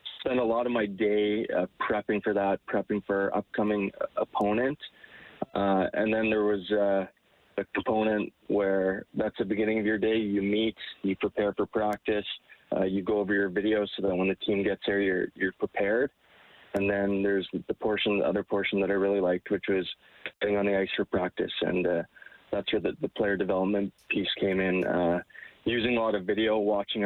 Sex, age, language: male, 20-39, English